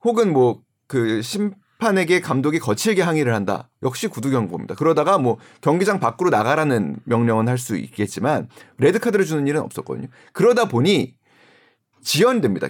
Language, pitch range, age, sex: Korean, 120-195 Hz, 30-49, male